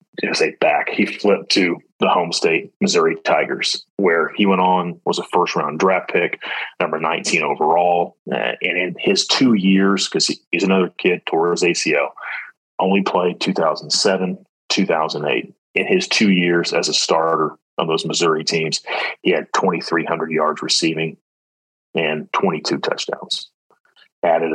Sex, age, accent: male, 30-49, American